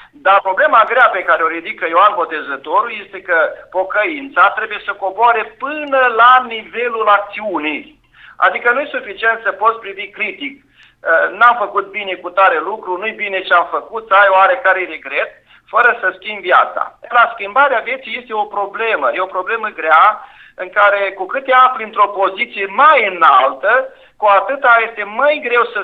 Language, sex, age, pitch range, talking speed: Romanian, male, 50-69, 185-255 Hz, 165 wpm